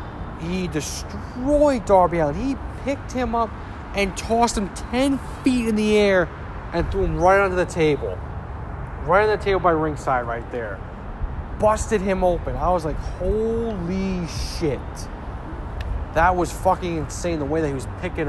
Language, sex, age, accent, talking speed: English, male, 20-39, American, 160 wpm